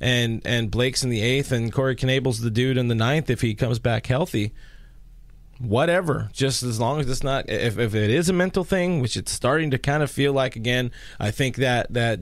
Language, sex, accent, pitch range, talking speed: English, male, American, 110-140 Hz, 225 wpm